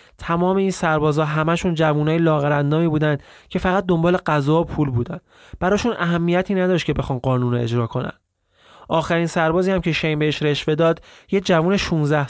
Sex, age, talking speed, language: male, 30-49, 160 wpm, Persian